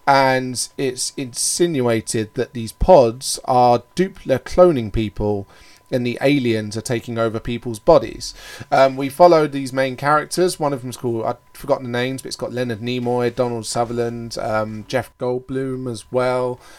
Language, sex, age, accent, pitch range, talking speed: English, male, 20-39, British, 115-140 Hz, 155 wpm